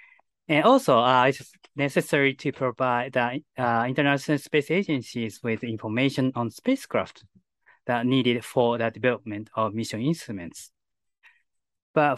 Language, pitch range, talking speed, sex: English, 115-145 Hz, 130 wpm, male